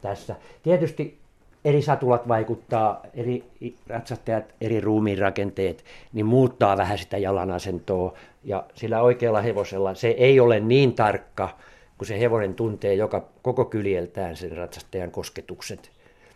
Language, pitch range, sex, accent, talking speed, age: Finnish, 105-130 Hz, male, native, 120 wpm, 50-69